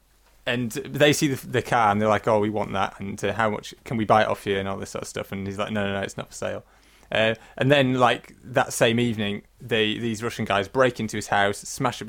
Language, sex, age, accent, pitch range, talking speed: English, male, 20-39, British, 105-140 Hz, 275 wpm